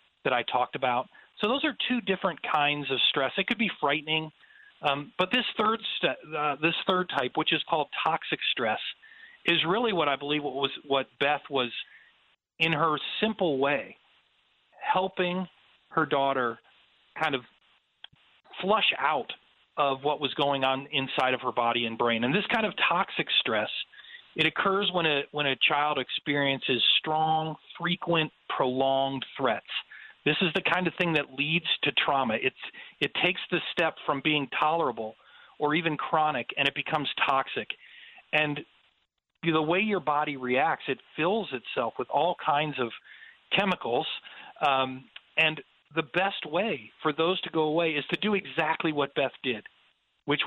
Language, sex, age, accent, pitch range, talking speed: English, male, 40-59, American, 135-170 Hz, 165 wpm